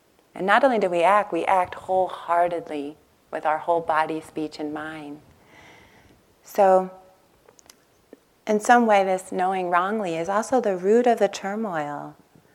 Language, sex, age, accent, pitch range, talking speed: English, female, 30-49, American, 170-210 Hz, 145 wpm